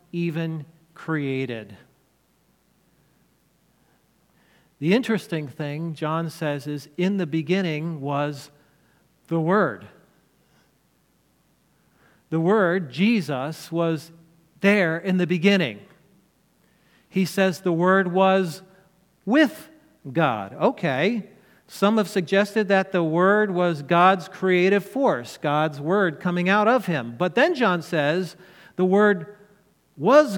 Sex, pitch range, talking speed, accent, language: male, 155-195 Hz, 105 wpm, American, English